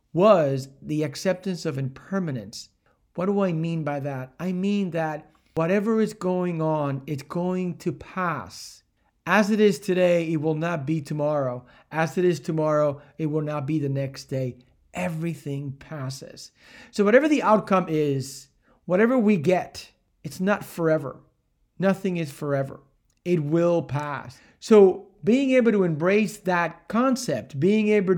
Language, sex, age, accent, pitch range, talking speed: English, male, 40-59, American, 135-185 Hz, 150 wpm